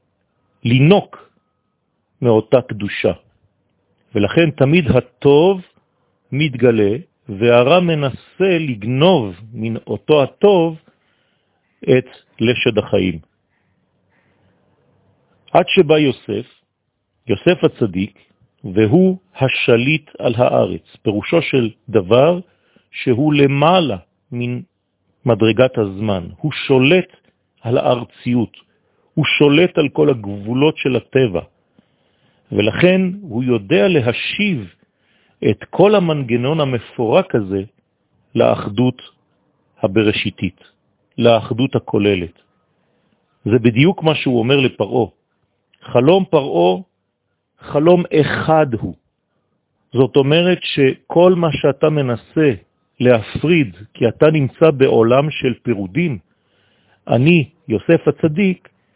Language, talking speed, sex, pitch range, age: French, 80 wpm, male, 110-160 Hz, 40-59